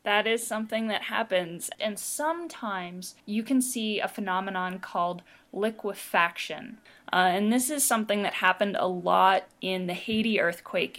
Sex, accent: female, American